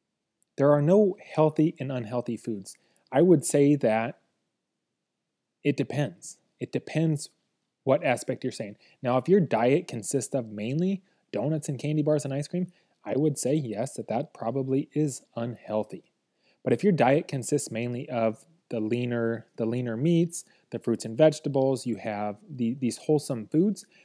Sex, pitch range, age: male, 115-145 Hz, 20-39